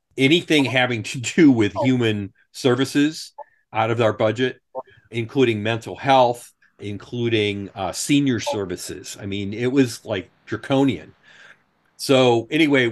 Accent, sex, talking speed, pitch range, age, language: American, male, 120 wpm, 100-130 Hz, 40-59, English